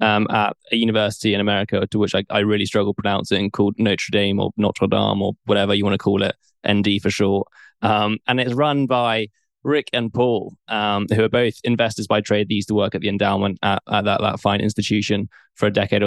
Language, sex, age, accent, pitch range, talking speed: English, male, 10-29, British, 100-110 Hz, 225 wpm